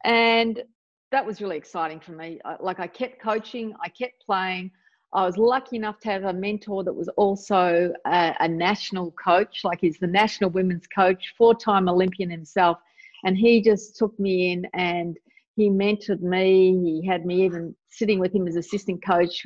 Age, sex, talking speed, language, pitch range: 40-59, female, 180 wpm, English, 180-225 Hz